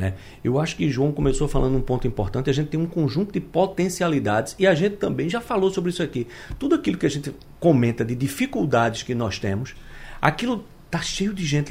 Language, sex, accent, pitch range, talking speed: Portuguese, male, Brazilian, 120-175 Hz, 210 wpm